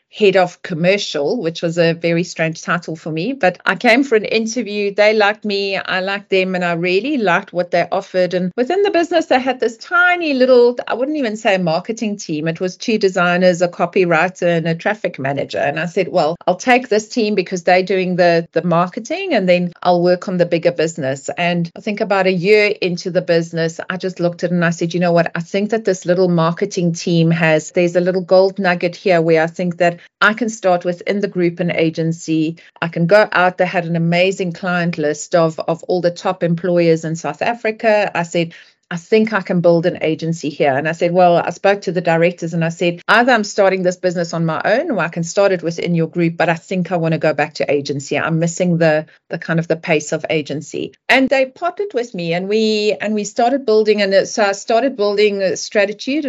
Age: 30-49